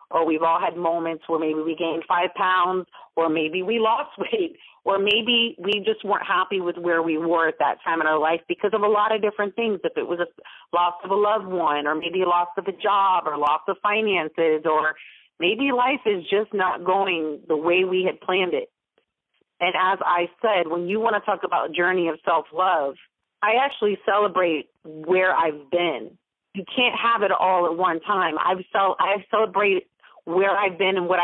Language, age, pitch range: English, 40-59, 165-205 Hz